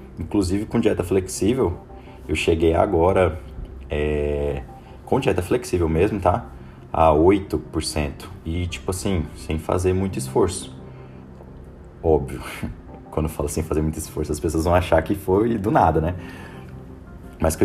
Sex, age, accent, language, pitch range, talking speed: male, 20-39, Brazilian, Portuguese, 80-105 Hz, 140 wpm